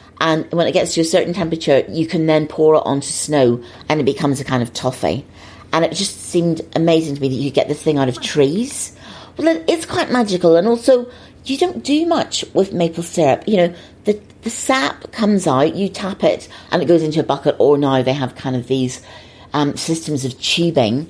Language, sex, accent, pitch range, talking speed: English, female, British, 135-175 Hz, 220 wpm